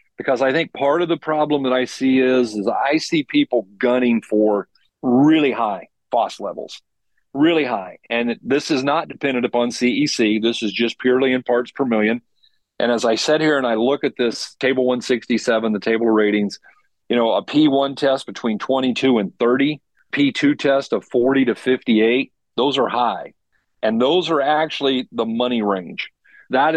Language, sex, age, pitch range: English, male, 40-59, 115-140 Hz